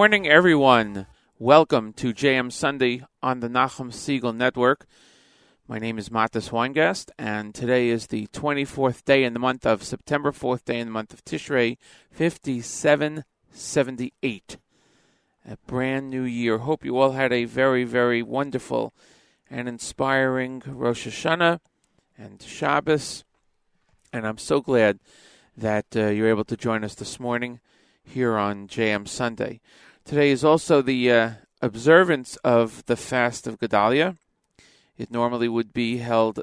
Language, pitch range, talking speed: English, 110-135 Hz, 145 wpm